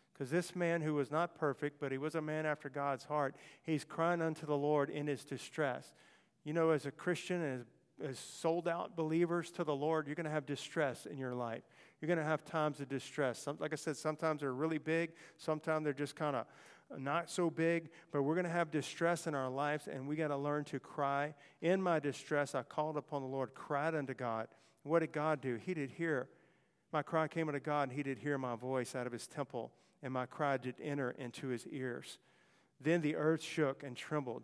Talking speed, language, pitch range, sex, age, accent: 225 wpm, English, 135-155 Hz, male, 50-69, American